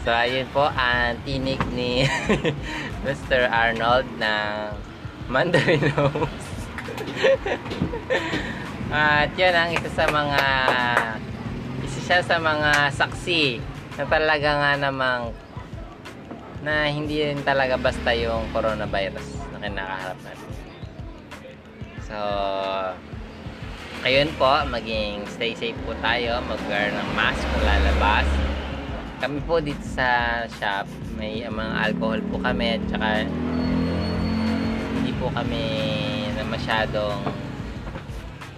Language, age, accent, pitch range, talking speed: Filipino, 20-39, native, 110-150 Hz, 95 wpm